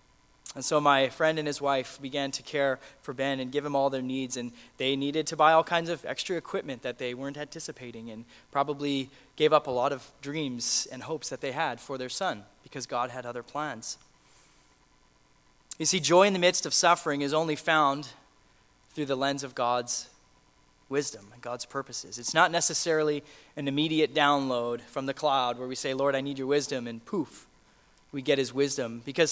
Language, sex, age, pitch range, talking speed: English, male, 20-39, 130-155 Hz, 200 wpm